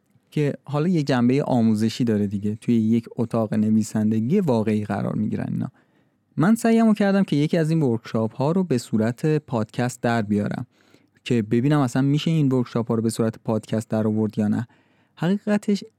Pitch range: 110-155 Hz